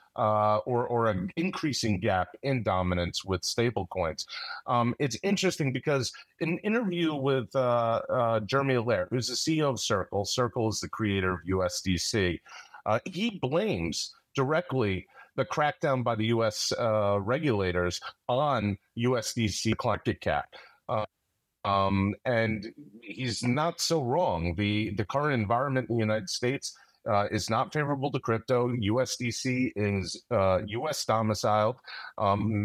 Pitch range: 100-125 Hz